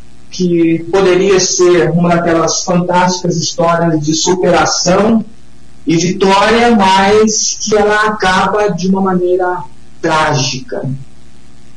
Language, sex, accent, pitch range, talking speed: Portuguese, male, Brazilian, 145-185 Hz, 95 wpm